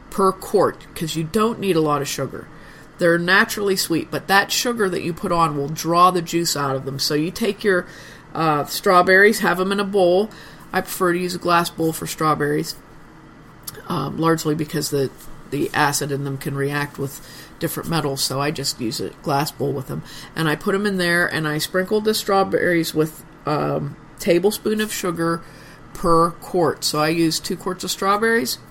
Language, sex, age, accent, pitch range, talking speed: English, female, 40-59, American, 155-195 Hz, 195 wpm